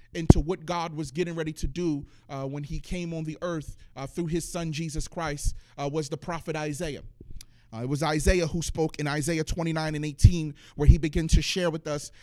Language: English